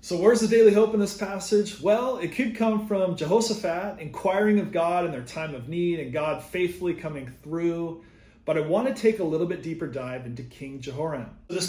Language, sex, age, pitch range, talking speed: English, male, 30-49, 150-195 Hz, 210 wpm